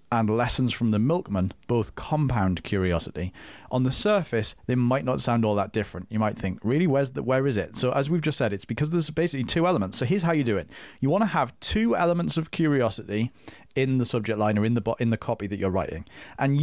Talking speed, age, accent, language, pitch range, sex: 235 wpm, 30-49, British, English, 105-140 Hz, male